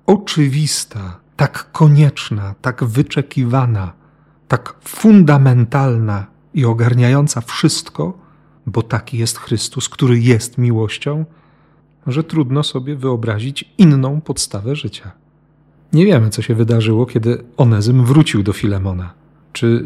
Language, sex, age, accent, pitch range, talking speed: Polish, male, 40-59, native, 115-150 Hz, 105 wpm